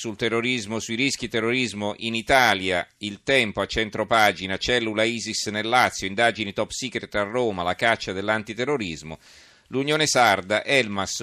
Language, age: Italian, 40-59